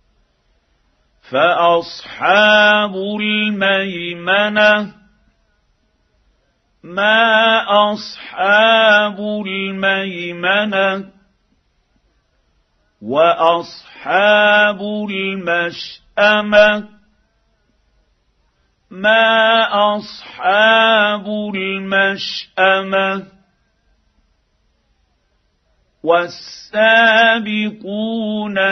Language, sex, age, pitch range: Arabic, male, 50-69, 175-210 Hz